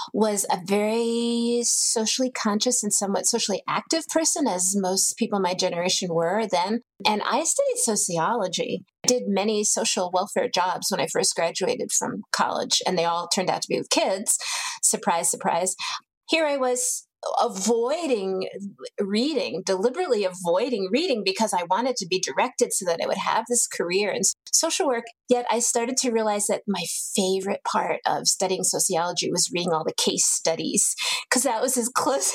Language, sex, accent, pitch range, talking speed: English, female, American, 185-250 Hz, 170 wpm